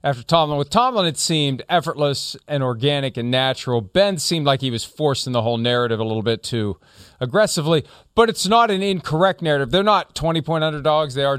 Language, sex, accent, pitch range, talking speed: English, male, American, 115-155 Hz, 200 wpm